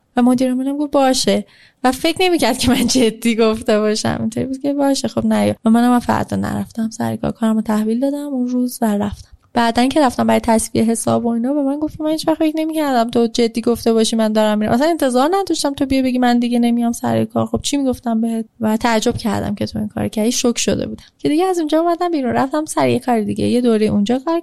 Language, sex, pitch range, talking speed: Persian, female, 215-270 Hz, 225 wpm